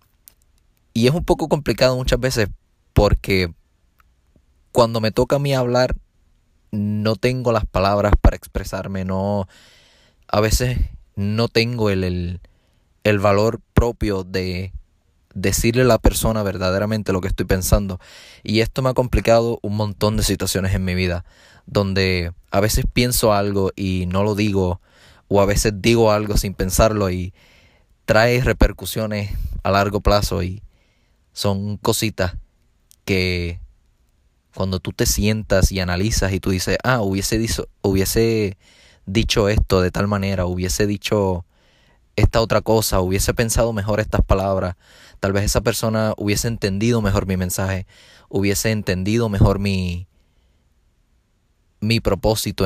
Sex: male